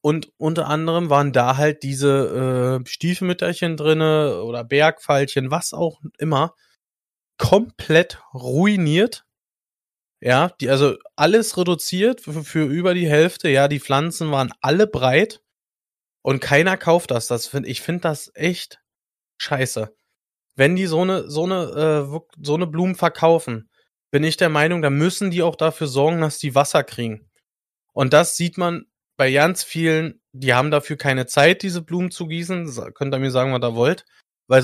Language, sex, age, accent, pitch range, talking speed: German, male, 20-39, German, 135-165 Hz, 160 wpm